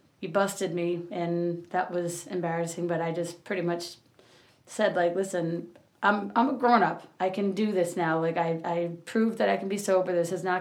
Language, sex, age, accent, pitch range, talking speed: English, female, 30-49, American, 170-200 Hz, 205 wpm